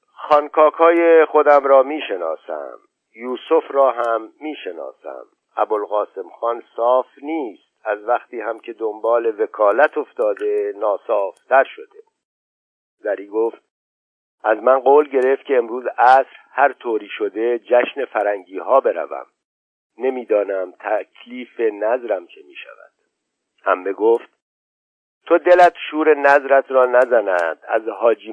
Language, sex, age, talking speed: Persian, male, 50-69, 115 wpm